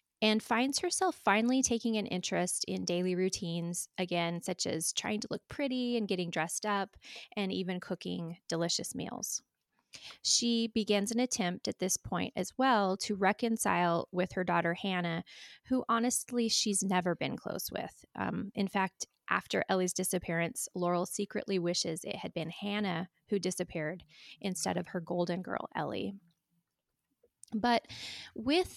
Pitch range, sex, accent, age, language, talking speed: 180-225 Hz, female, American, 20-39, English, 150 wpm